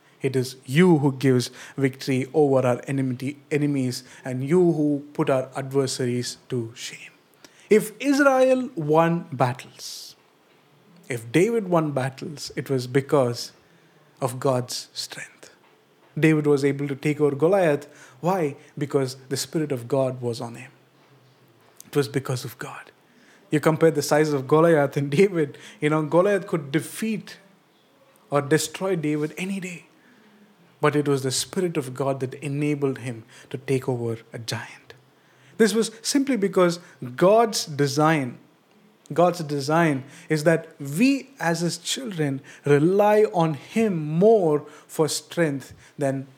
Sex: male